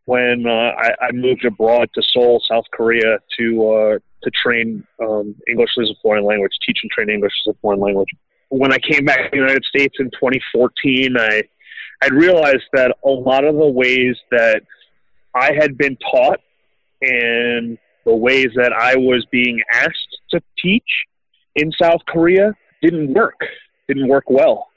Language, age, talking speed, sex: English, 30-49, 170 wpm, male